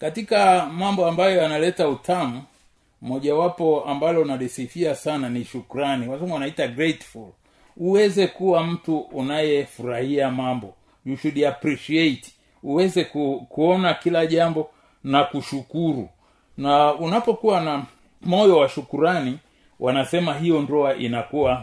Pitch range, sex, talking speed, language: 135-175 Hz, male, 110 wpm, Swahili